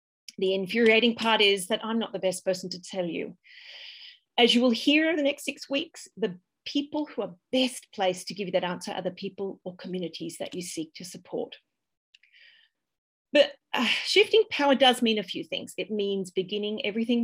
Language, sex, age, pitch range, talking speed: English, female, 40-59, 180-235 Hz, 195 wpm